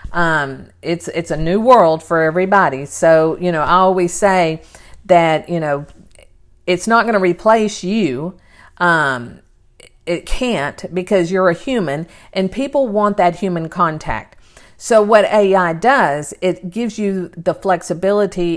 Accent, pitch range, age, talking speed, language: American, 160-195 Hz, 50-69, 145 wpm, English